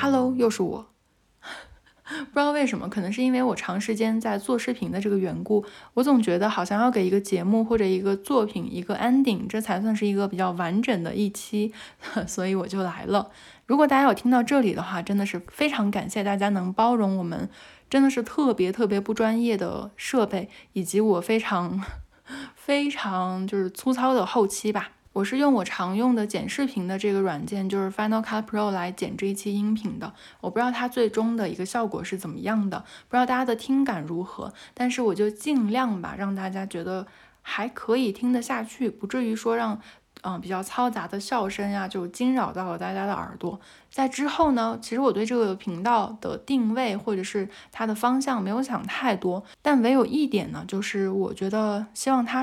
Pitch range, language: 195-245 Hz, Chinese